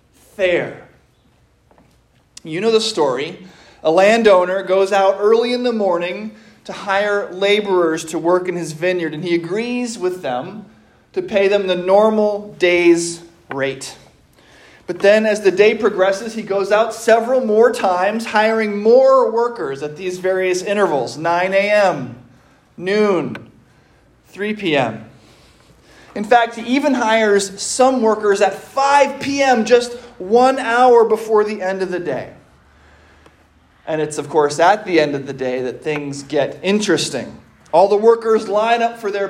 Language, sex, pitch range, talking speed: English, male, 180-235 Hz, 145 wpm